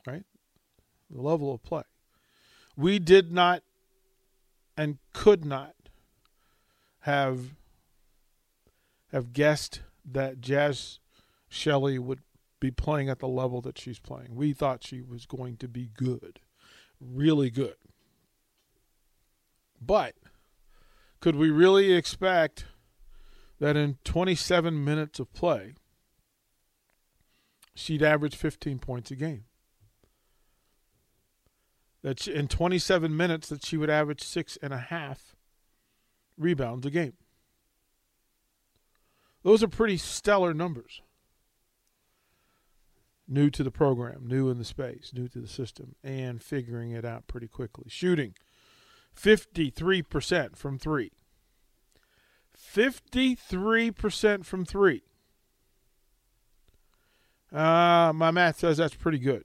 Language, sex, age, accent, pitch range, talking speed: English, male, 40-59, American, 130-170 Hz, 105 wpm